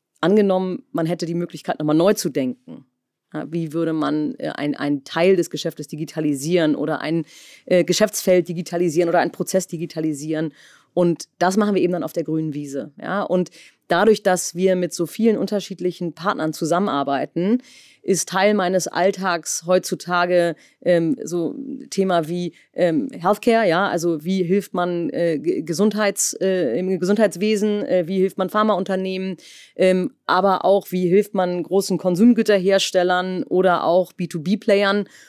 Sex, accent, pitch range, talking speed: female, German, 170-200 Hz, 145 wpm